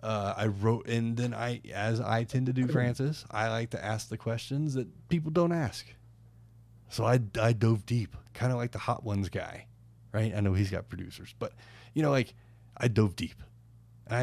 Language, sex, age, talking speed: English, male, 20-39, 200 wpm